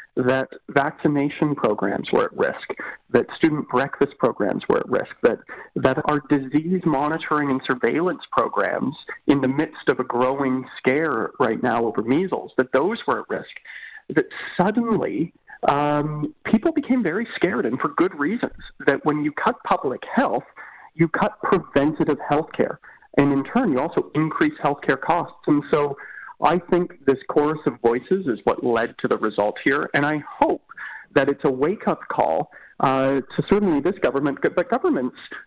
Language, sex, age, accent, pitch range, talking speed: English, male, 40-59, American, 135-155 Hz, 165 wpm